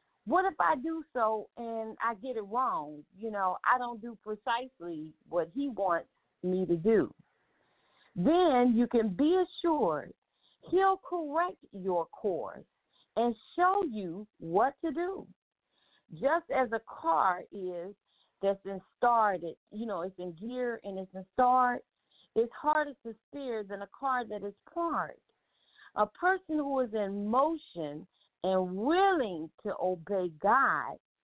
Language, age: English, 50-69